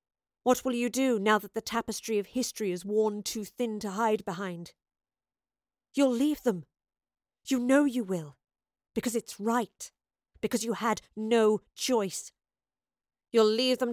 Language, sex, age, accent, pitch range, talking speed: English, female, 40-59, British, 190-240 Hz, 150 wpm